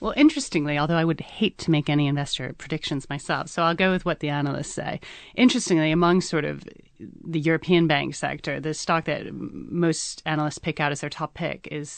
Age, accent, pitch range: 30-49, American, 145-165 Hz